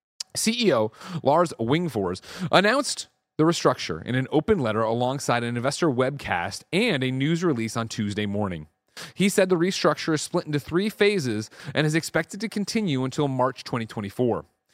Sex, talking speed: male, 155 wpm